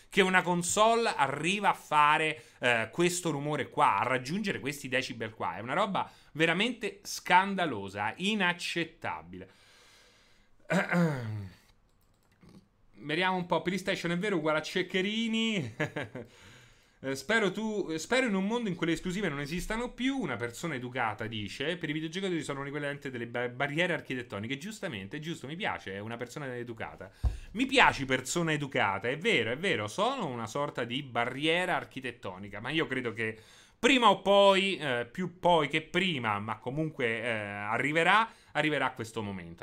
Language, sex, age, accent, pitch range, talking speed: Italian, male, 30-49, native, 115-180 Hz, 150 wpm